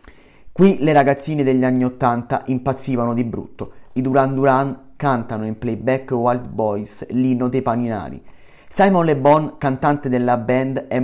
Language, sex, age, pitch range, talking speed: Italian, male, 30-49, 125-150 Hz, 145 wpm